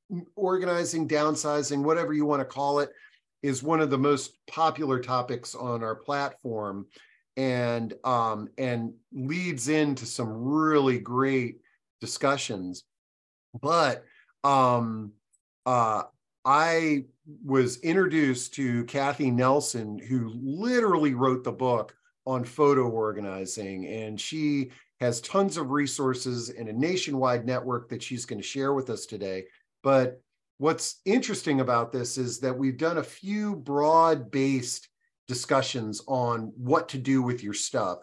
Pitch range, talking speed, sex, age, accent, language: 115-145 Hz, 130 wpm, male, 40-59, American, English